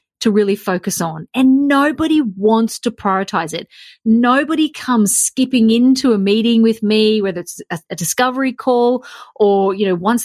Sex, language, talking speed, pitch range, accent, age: female, English, 165 wpm, 205-260 Hz, Australian, 30-49